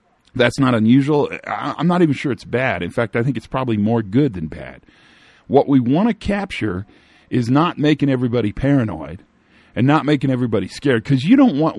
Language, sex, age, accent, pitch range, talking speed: English, male, 40-59, American, 110-150 Hz, 195 wpm